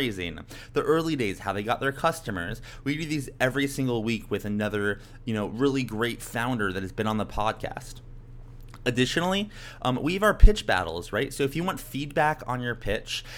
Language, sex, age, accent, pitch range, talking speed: English, male, 20-39, American, 115-145 Hz, 195 wpm